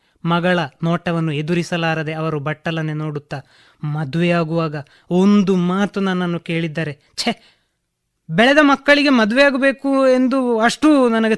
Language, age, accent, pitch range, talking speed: Kannada, 20-39, native, 155-230 Hz, 100 wpm